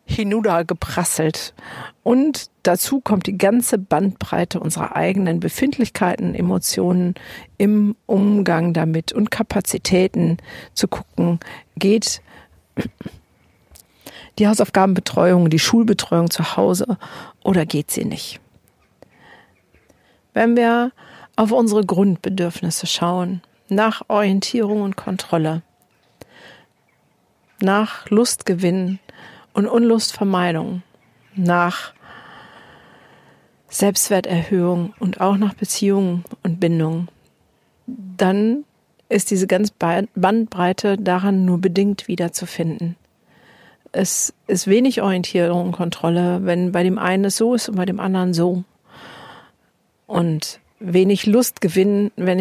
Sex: female